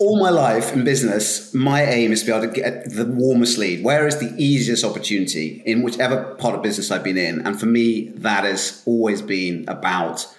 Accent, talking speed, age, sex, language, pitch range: British, 215 wpm, 30-49, male, English, 100-120 Hz